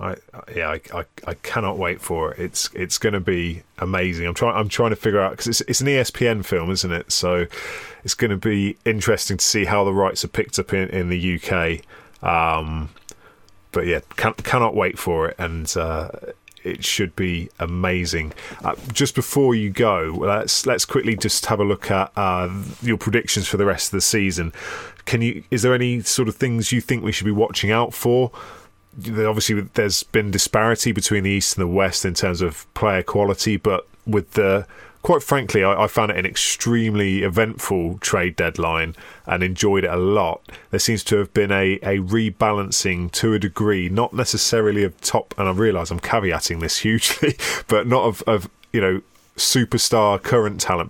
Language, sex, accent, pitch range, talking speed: English, male, British, 95-115 Hz, 195 wpm